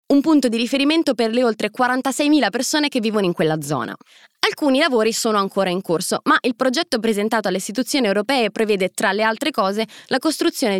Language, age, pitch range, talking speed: Italian, 20-39, 195-270 Hz, 190 wpm